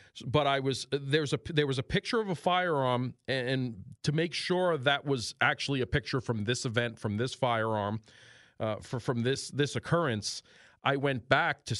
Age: 40-59